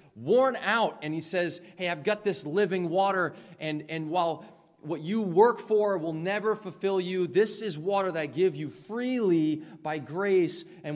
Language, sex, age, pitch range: English, male, 30-49, 125-175 Hz